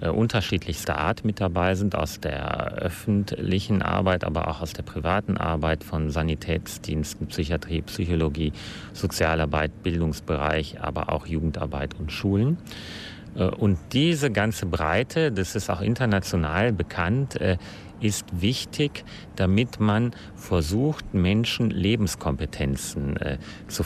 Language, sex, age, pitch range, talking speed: German, male, 40-59, 85-105 Hz, 110 wpm